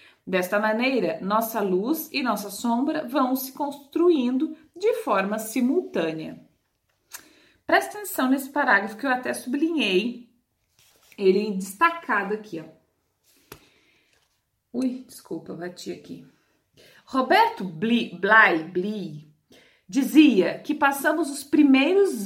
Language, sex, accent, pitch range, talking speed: Portuguese, female, Brazilian, 200-285 Hz, 100 wpm